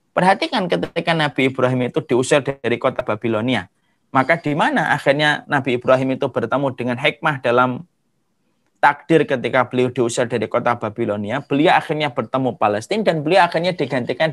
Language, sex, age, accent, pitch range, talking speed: Indonesian, male, 30-49, native, 135-195 Hz, 145 wpm